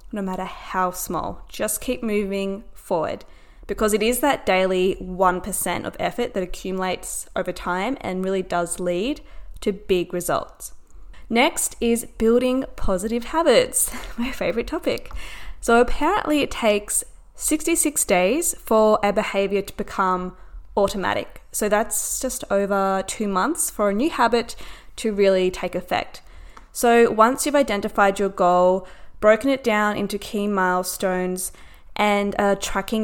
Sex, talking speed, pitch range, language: female, 135 wpm, 190-235 Hz, English